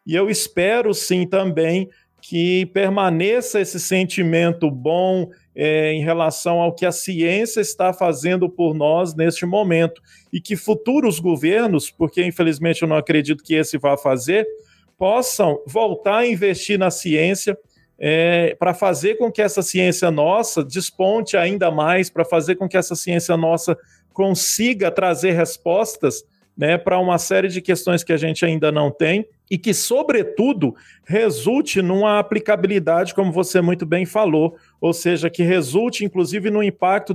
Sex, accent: male, Brazilian